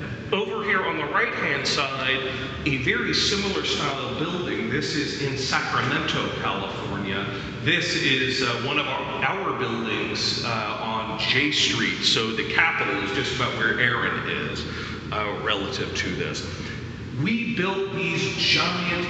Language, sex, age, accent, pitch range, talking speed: English, male, 40-59, American, 120-165 Hz, 140 wpm